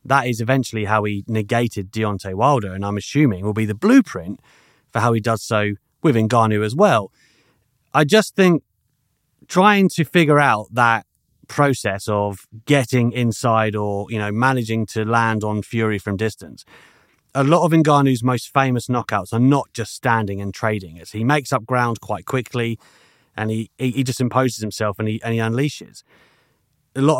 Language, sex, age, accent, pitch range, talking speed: English, male, 30-49, British, 110-145 Hz, 175 wpm